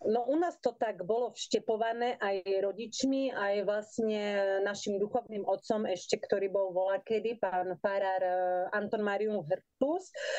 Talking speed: 135 wpm